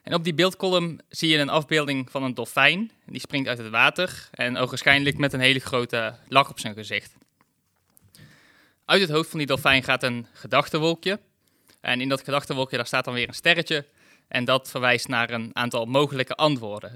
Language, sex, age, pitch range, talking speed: Dutch, male, 20-39, 125-150 Hz, 185 wpm